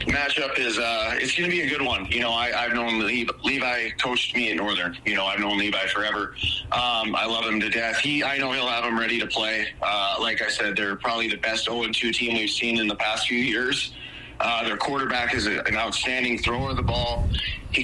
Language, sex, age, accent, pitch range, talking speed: English, male, 30-49, American, 105-120 Hz, 240 wpm